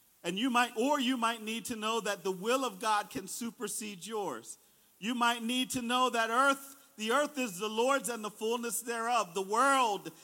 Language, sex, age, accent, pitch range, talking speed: English, male, 50-69, American, 215-285 Hz, 205 wpm